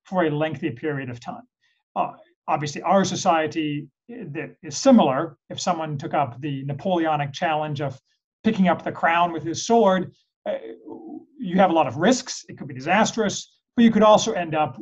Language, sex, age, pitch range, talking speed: English, male, 40-59, 145-190 Hz, 180 wpm